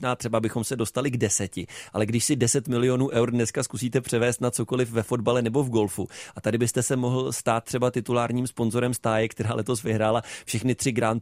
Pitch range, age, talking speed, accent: 115-130 Hz, 30-49, 205 wpm, native